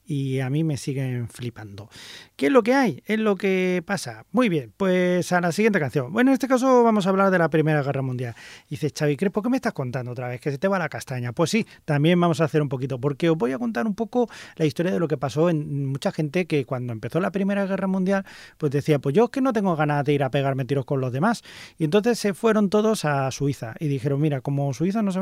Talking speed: 270 wpm